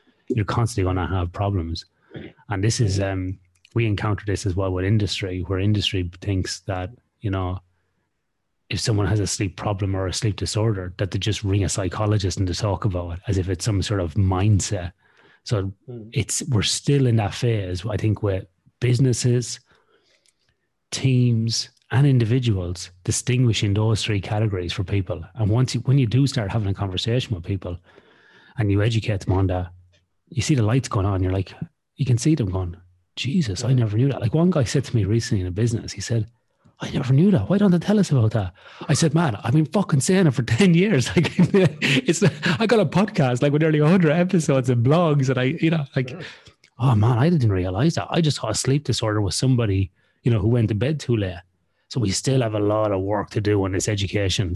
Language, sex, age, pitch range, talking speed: English, male, 30-49, 95-130 Hz, 215 wpm